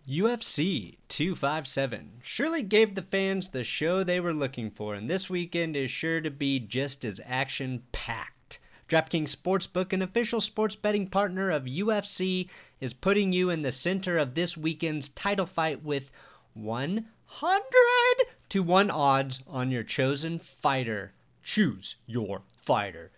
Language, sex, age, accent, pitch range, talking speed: English, male, 30-49, American, 135-190 Hz, 140 wpm